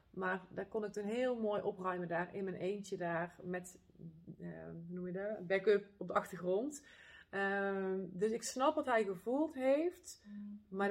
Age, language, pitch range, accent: 30-49, Dutch, 175-200 Hz, Dutch